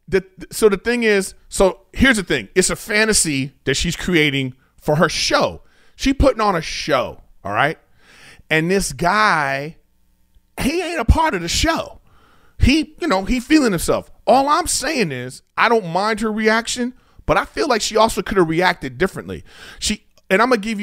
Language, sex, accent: English, male, American